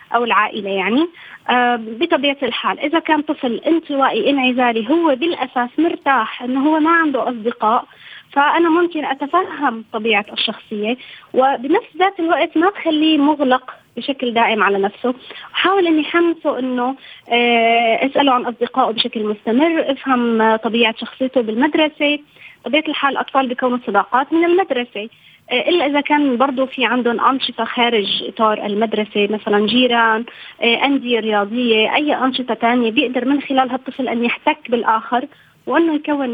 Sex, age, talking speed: female, 20-39, 130 wpm